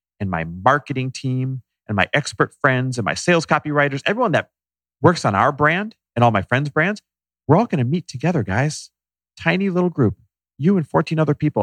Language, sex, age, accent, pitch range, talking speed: English, male, 40-59, American, 90-140 Hz, 195 wpm